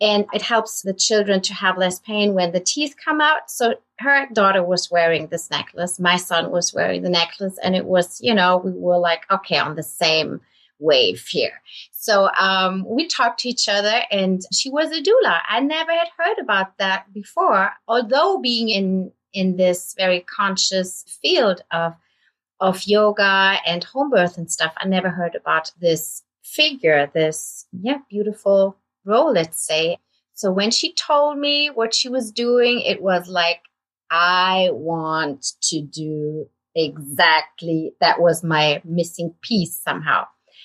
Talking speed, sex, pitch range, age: 165 wpm, female, 175-230 Hz, 30-49